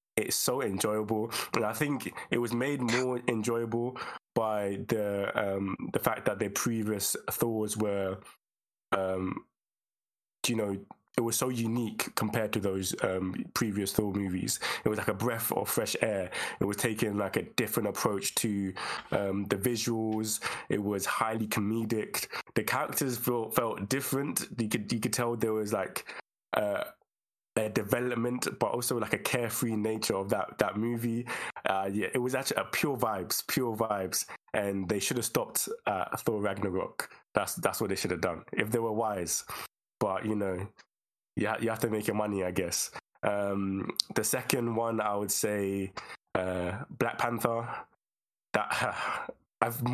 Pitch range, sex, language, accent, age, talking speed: 100-120 Hz, male, English, British, 20-39, 165 wpm